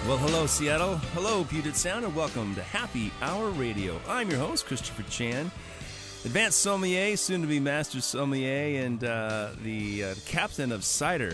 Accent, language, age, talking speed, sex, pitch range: American, English, 30-49, 155 wpm, male, 105-140 Hz